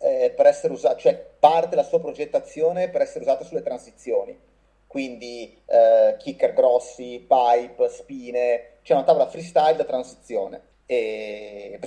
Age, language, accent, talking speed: 30-49, Italian, native, 140 wpm